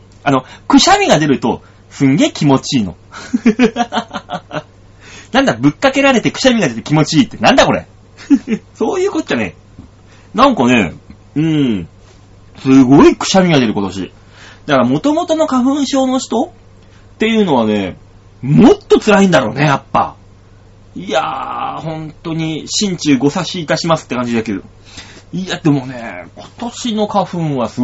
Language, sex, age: Japanese, male, 30-49